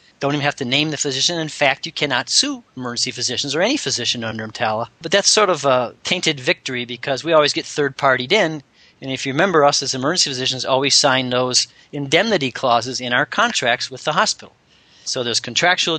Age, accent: 40-59, American